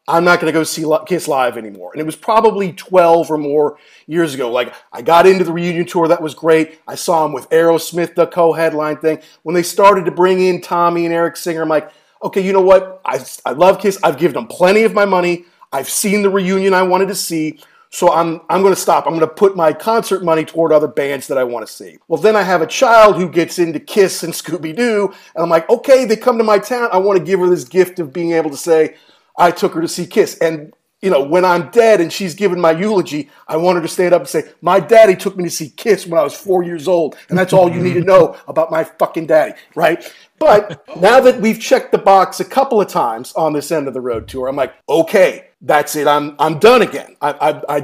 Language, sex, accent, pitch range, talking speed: English, male, American, 160-190 Hz, 255 wpm